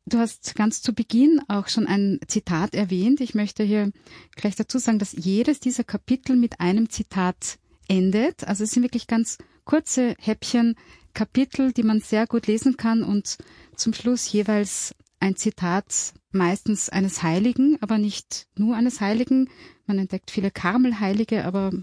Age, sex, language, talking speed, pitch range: 30-49, female, German, 155 wpm, 195-235 Hz